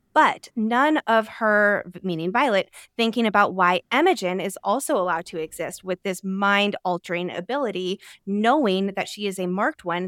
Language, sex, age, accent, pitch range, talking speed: English, female, 20-39, American, 180-220 Hz, 155 wpm